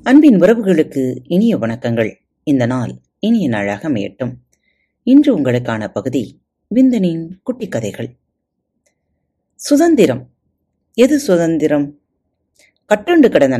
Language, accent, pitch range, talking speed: Tamil, native, 125-215 Hz, 90 wpm